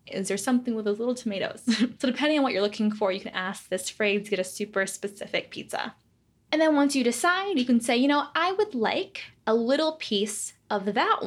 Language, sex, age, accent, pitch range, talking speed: Italian, female, 10-29, American, 200-250 Hz, 230 wpm